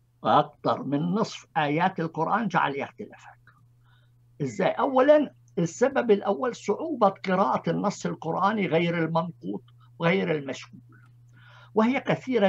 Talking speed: 100 wpm